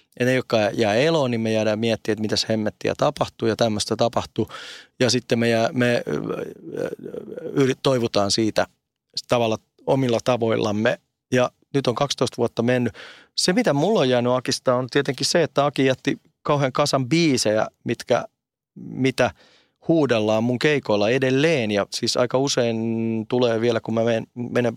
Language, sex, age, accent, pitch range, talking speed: Finnish, male, 30-49, native, 115-140 Hz, 155 wpm